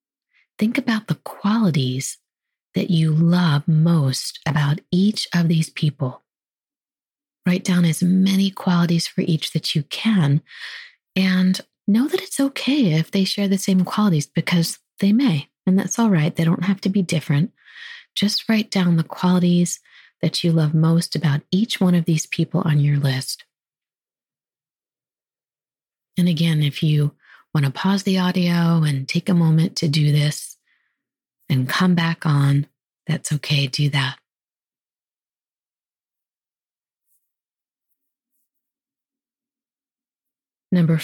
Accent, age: American, 30-49